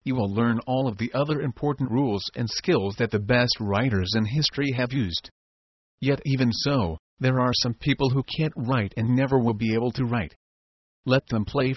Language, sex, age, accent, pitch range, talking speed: English, male, 40-59, American, 110-140 Hz, 200 wpm